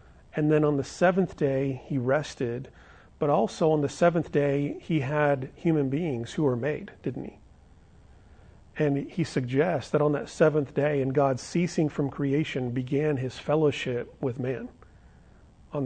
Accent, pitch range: American, 130-155 Hz